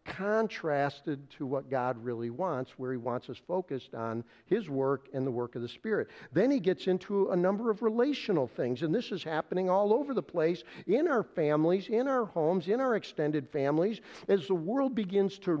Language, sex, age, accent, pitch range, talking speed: English, male, 50-69, American, 145-190 Hz, 200 wpm